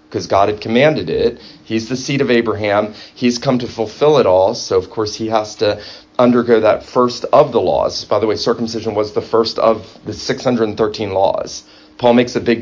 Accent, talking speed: American, 205 wpm